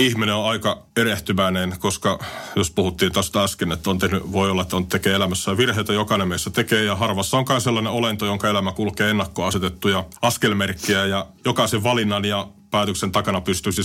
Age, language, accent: 30-49, Finnish, native